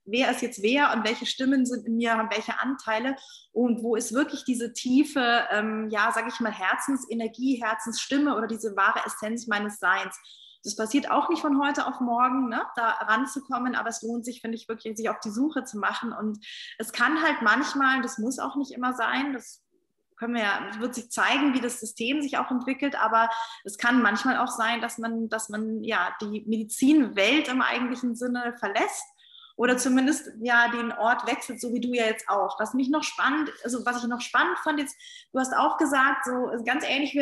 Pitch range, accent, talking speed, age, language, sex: 225-270 Hz, German, 210 wpm, 20-39, German, female